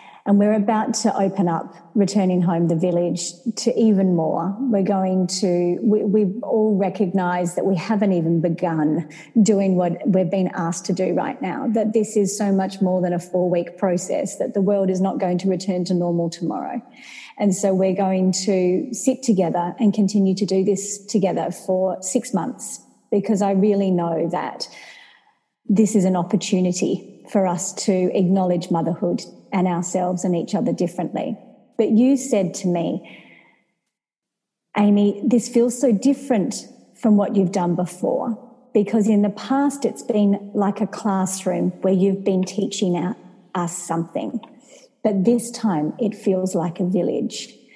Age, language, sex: 40-59, English, female